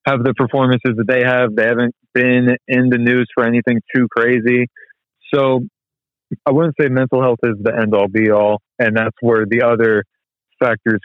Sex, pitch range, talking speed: male, 110-130 Hz, 185 wpm